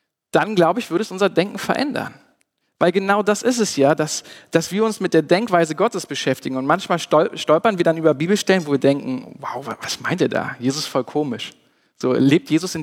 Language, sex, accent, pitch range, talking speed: German, male, German, 150-205 Hz, 215 wpm